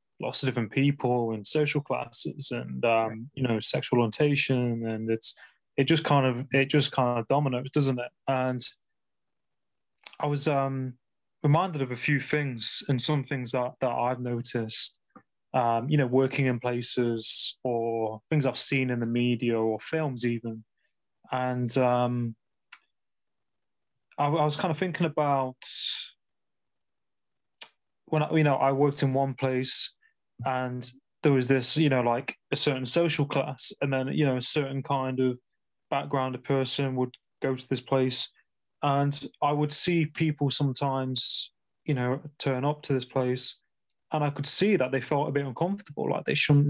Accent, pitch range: British, 125-150 Hz